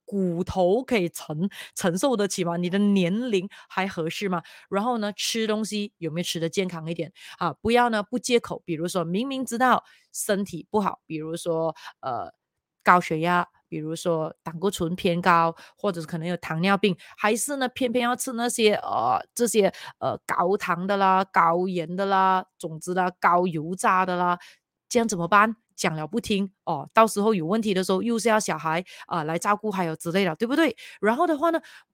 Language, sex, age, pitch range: Chinese, female, 20-39, 175-235 Hz